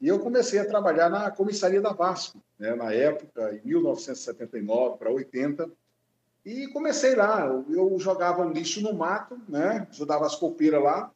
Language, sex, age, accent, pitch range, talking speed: Portuguese, male, 50-69, Brazilian, 150-215 Hz, 155 wpm